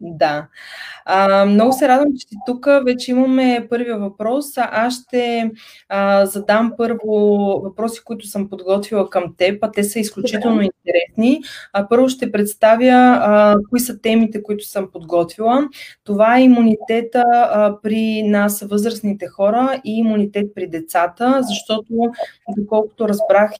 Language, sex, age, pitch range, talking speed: Bulgarian, female, 20-39, 195-230 Hz, 140 wpm